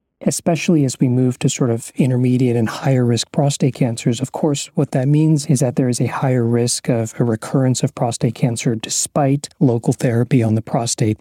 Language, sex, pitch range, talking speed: English, male, 120-140 Hz, 195 wpm